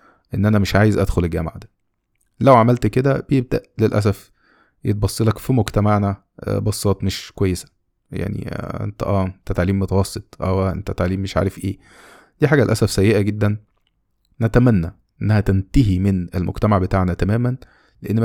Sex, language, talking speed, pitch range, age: male, Arabic, 140 wpm, 95-115 Hz, 20-39